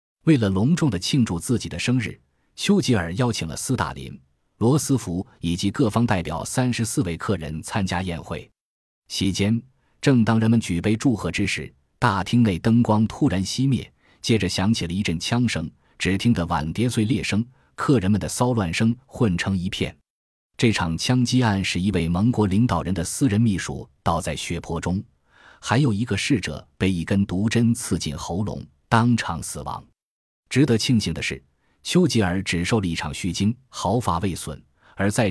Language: Chinese